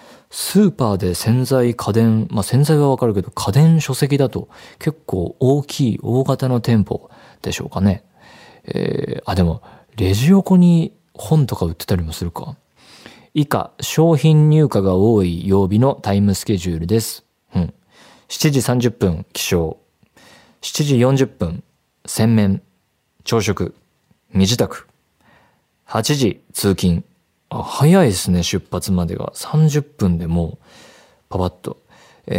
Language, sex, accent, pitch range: Japanese, male, native, 95-135 Hz